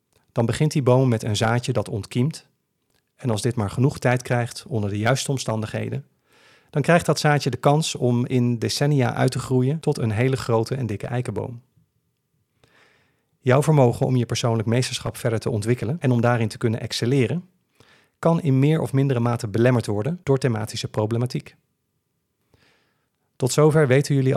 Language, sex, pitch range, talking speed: Dutch, male, 115-140 Hz, 170 wpm